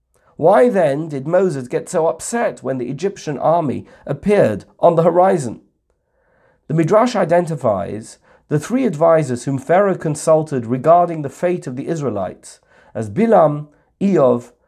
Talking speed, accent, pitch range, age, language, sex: 135 wpm, British, 125-180 Hz, 50-69, English, male